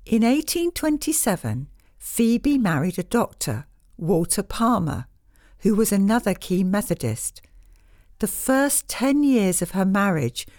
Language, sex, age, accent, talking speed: English, female, 60-79, British, 115 wpm